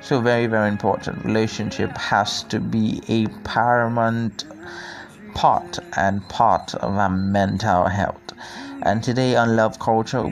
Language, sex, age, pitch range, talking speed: English, male, 30-49, 100-125 Hz, 130 wpm